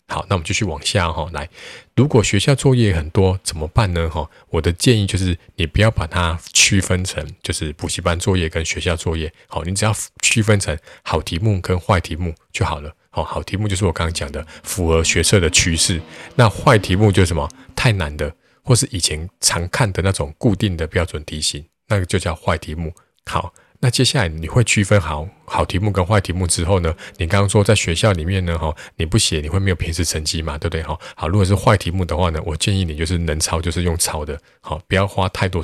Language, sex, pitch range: Chinese, male, 80-100 Hz